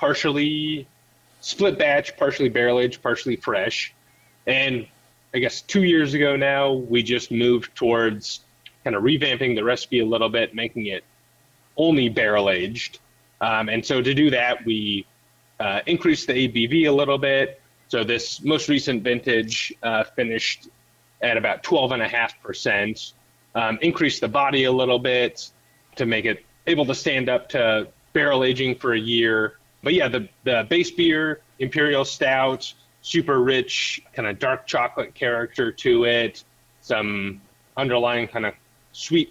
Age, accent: 30-49, American